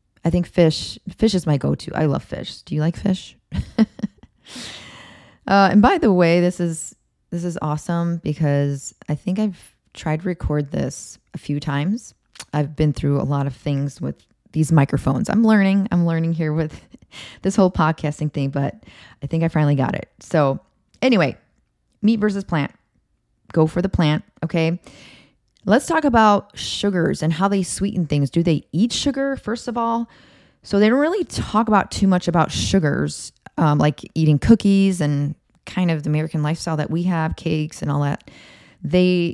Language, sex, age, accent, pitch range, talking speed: English, female, 20-39, American, 150-195 Hz, 175 wpm